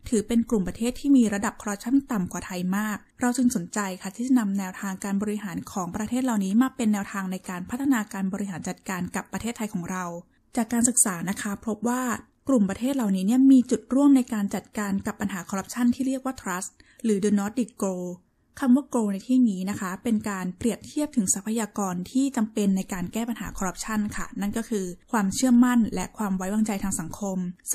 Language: Thai